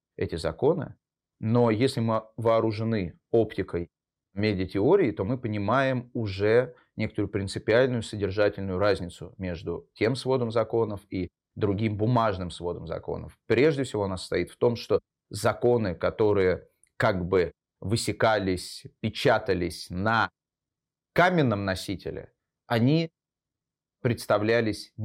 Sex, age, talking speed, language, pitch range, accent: male, 30-49, 105 wpm, Russian, 100-125 Hz, native